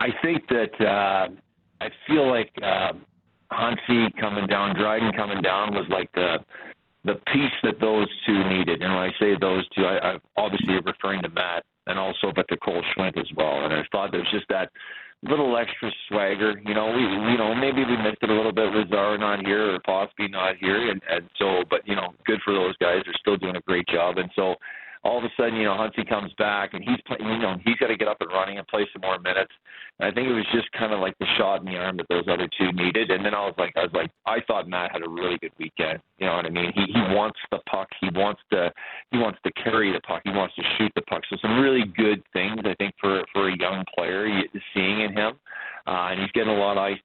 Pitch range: 95-110 Hz